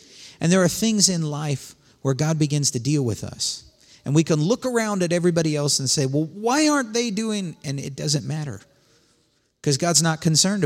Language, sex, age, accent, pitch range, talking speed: English, male, 50-69, American, 105-150 Hz, 205 wpm